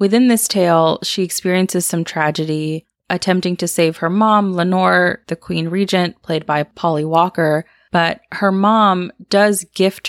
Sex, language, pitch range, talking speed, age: female, English, 160-200 Hz, 150 wpm, 20-39